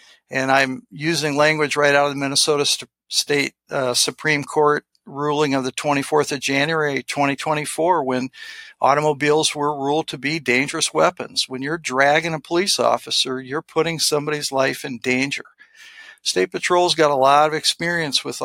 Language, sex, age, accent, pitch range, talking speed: English, male, 60-79, American, 135-165 Hz, 155 wpm